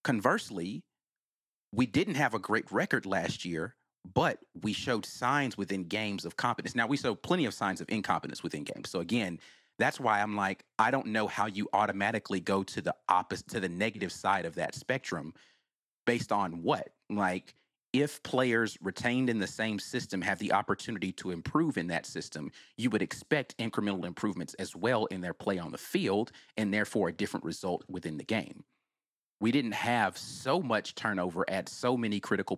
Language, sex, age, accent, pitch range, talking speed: English, male, 30-49, American, 95-125 Hz, 185 wpm